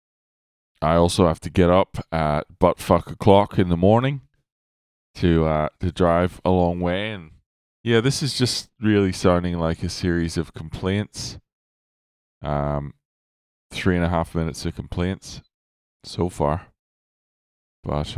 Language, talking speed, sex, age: English, 140 wpm, male, 20-39